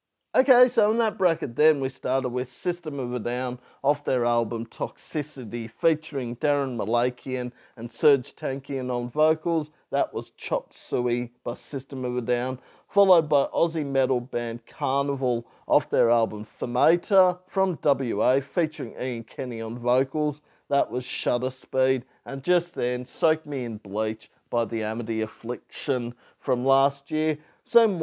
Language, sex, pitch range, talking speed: English, male, 115-155 Hz, 150 wpm